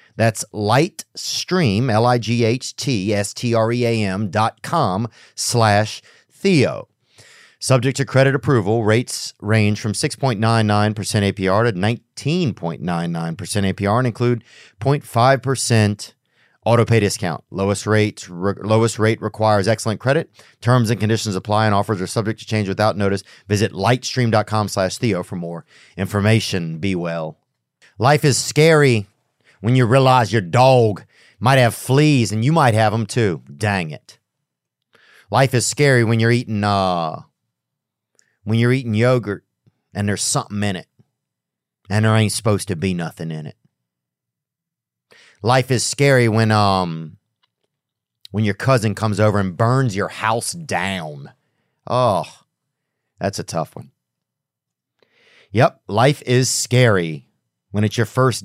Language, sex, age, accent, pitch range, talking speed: English, male, 40-59, American, 100-125 Hz, 140 wpm